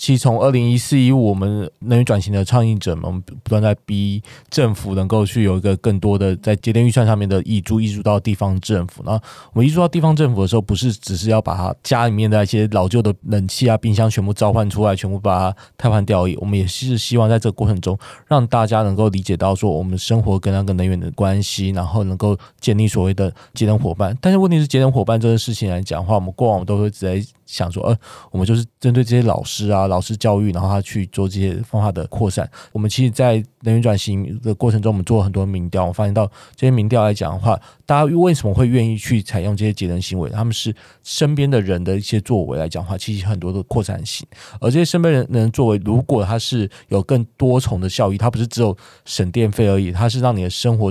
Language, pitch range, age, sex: Chinese, 100-120 Hz, 20-39, male